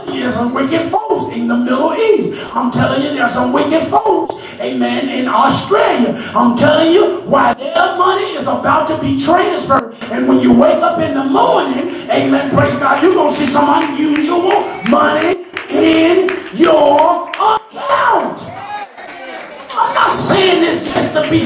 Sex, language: male, English